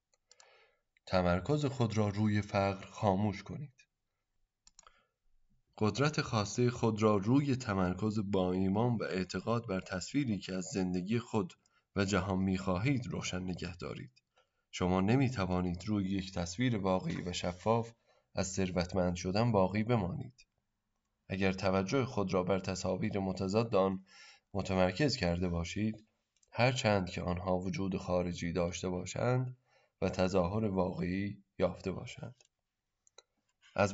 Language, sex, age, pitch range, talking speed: Persian, male, 20-39, 95-115 Hz, 115 wpm